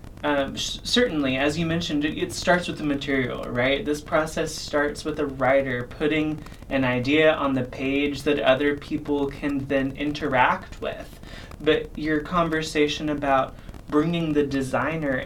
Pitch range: 135-150 Hz